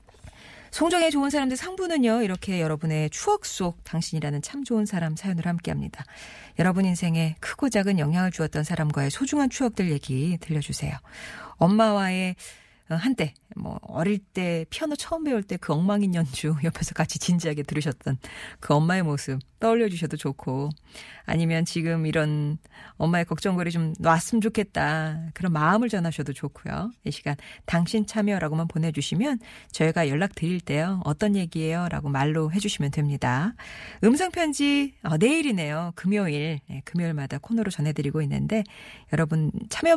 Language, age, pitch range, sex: Korean, 40-59, 155-215 Hz, female